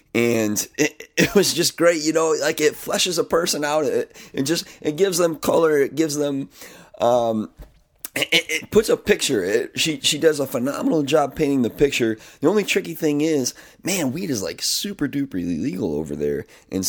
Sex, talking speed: male, 195 wpm